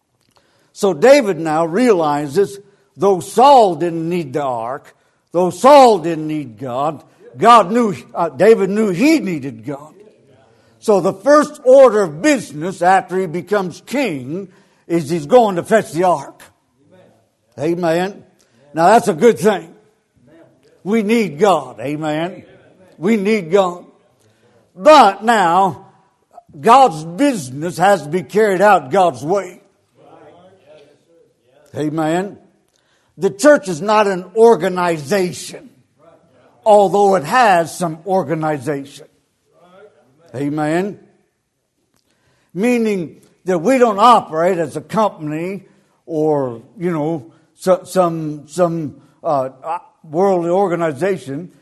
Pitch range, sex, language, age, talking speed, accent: 155-205 Hz, male, English, 60-79, 110 wpm, American